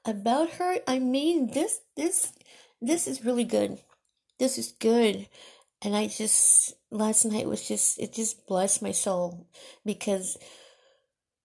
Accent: American